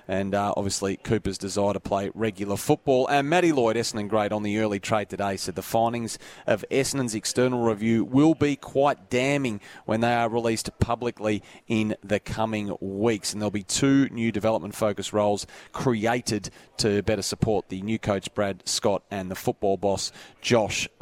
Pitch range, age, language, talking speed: 105-125 Hz, 30-49, English, 170 wpm